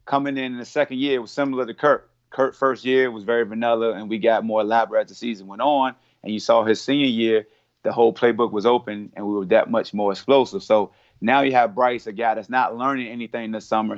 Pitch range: 105-120 Hz